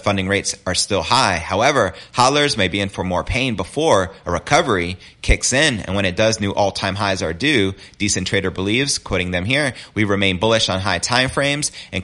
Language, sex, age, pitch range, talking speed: English, male, 30-49, 95-110 Hz, 205 wpm